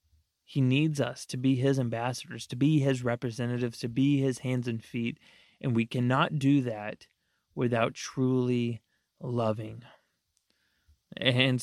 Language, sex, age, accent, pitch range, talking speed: English, male, 30-49, American, 120-135 Hz, 135 wpm